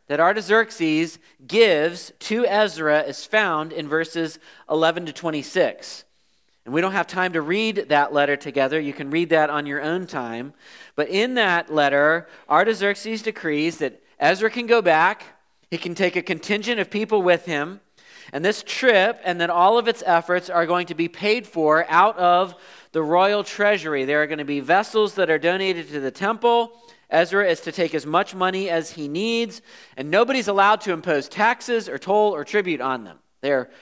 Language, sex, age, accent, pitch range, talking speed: English, male, 40-59, American, 150-210 Hz, 185 wpm